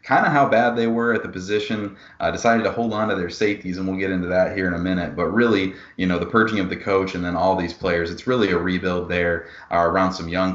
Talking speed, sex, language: 280 wpm, male, English